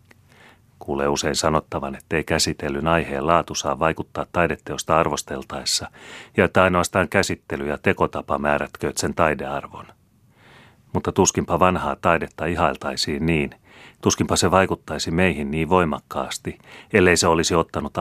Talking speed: 125 wpm